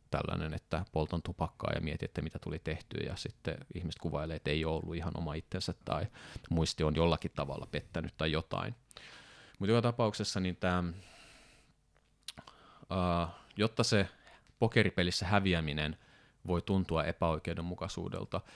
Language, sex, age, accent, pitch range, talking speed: Finnish, male, 30-49, native, 80-95 Hz, 130 wpm